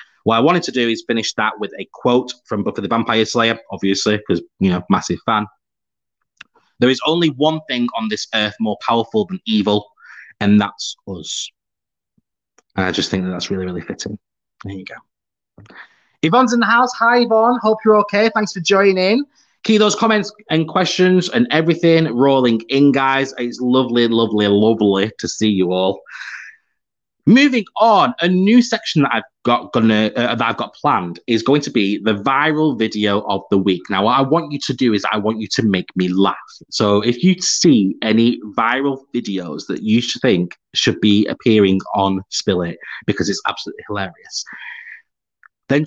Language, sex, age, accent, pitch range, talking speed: English, male, 20-39, British, 105-155 Hz, 185 wpm